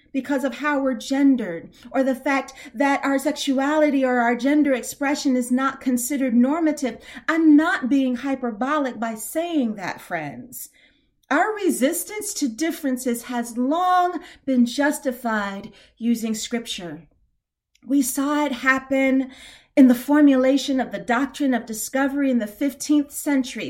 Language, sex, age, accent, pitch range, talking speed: English, female, 40-59, American, 255-300 Hz, 135 wpm